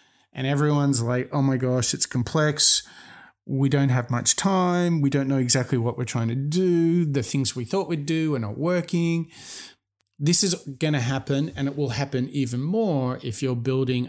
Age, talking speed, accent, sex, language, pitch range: 30-49, 190 wpm, Australian, male, English, 120-145 Hz